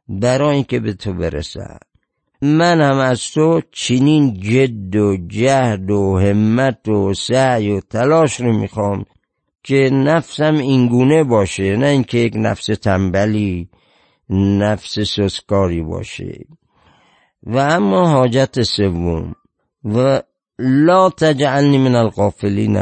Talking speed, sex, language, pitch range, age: 110 wpm, male, Persian, 100-135 Hz, 50-69